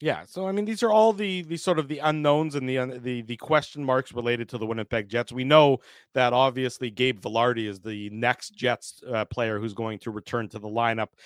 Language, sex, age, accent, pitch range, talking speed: English, male, 40-59, American, 110-135 Hz, 230 wpm